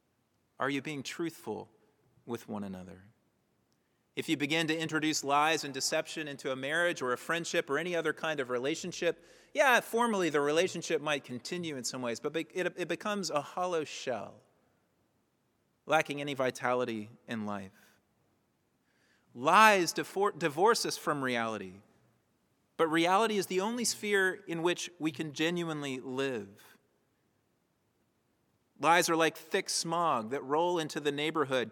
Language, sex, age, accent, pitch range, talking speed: English, male, 30-49, American, 130-175 Hz, 140 wpm